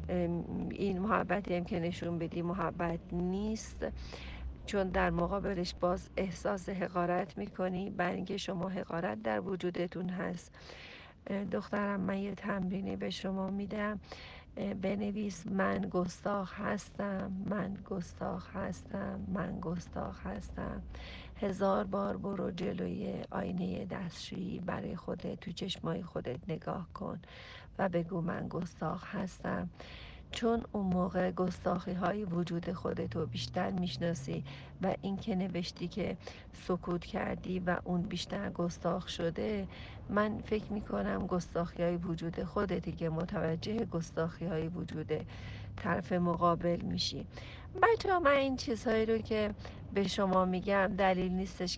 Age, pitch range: 50-69, 170-200 Hz